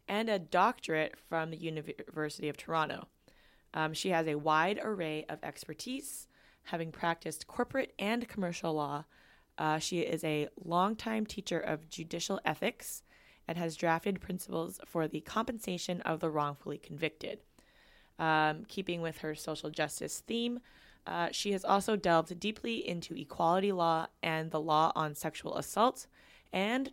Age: 20-39